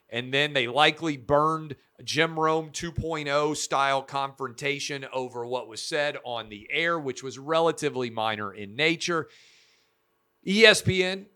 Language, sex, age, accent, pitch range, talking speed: English, male, 40-59, American, 120-150 Hz, 120 wpm